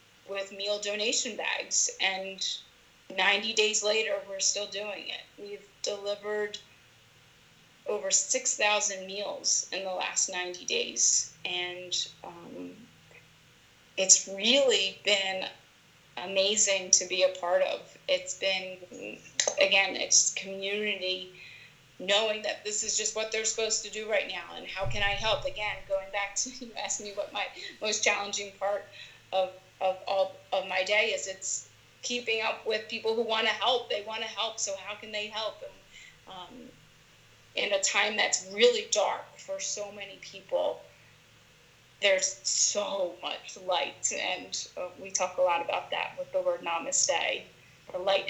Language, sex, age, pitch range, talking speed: English, female, 30-49, 185-220 Hz, 150 wpm